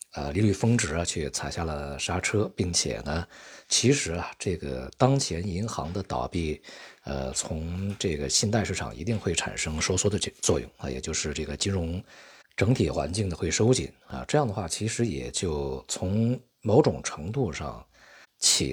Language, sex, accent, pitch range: Chinese, male, native, 75-105 Hz